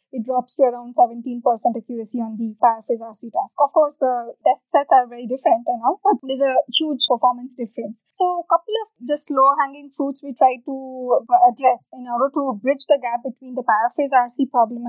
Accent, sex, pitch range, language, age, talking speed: Indian, female, 245-315 Hz, English, 20-39, 200 wpm